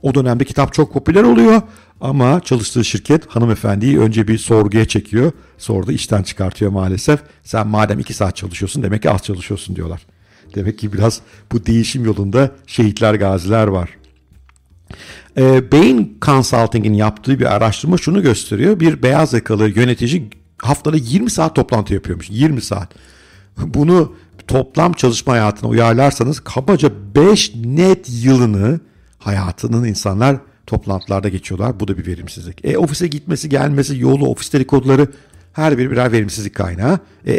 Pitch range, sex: 100-135 Hz, male